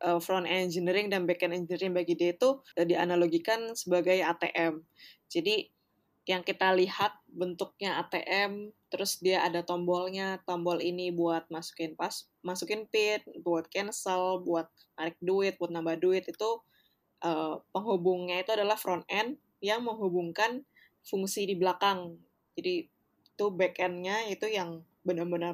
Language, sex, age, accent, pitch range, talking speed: Indonesian, female, 20-39, native, 175-195 Hz, 125 wpm